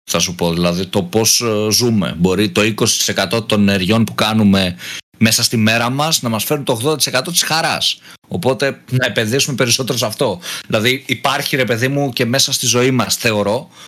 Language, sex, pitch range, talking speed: Greek, male, 110-140 Hz, 180 wpm